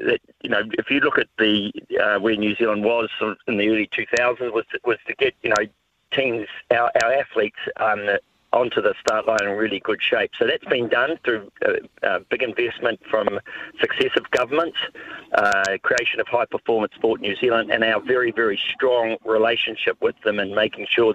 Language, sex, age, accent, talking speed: English, male, 40-59, Australian, 195 wpm